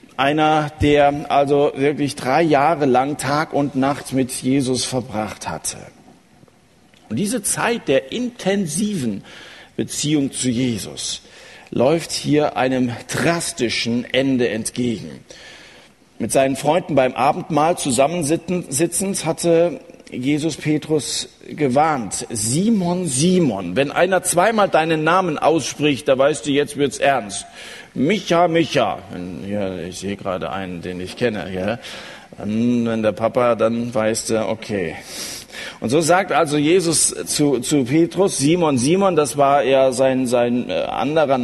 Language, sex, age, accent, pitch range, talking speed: German, male, 50-69, German, 130-185 Hz, 125 wpm